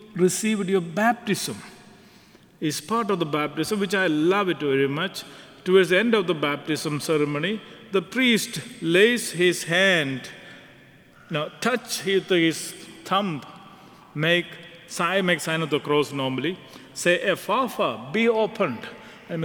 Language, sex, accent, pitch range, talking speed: English, male, Indian, 160-210 Hz, 135 wpm